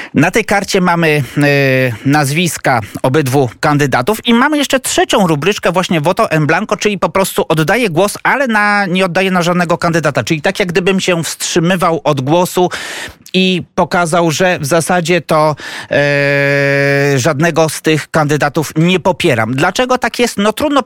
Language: Polish